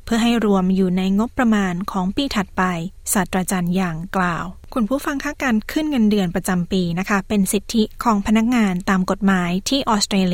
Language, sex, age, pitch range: Thai, female, 20-39, 190-225 Hz